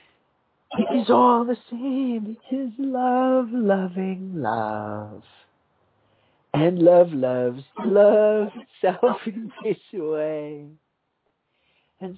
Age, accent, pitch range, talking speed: 60-79, American, 125-185 Hz, 95 wpm